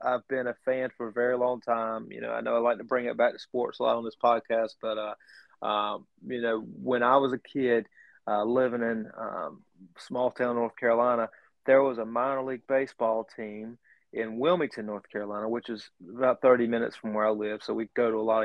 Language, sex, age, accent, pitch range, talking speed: English, male, 30-49, American, 115-135 Hz, 230 wpm